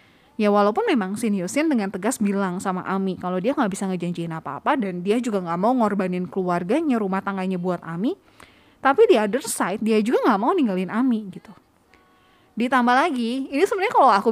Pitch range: 195-255 Hz